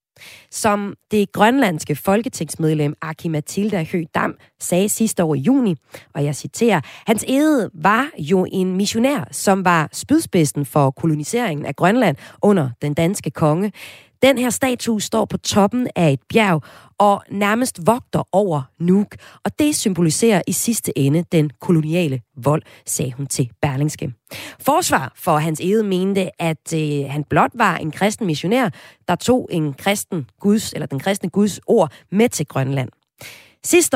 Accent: native